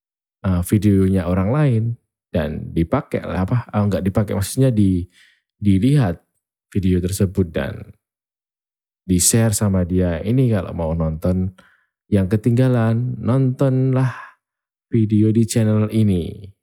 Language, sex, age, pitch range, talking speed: Indonesian, male, 20-39, 90-115 Hz, 110 wpm